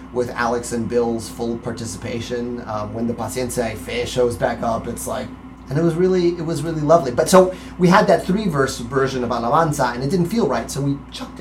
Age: 30-49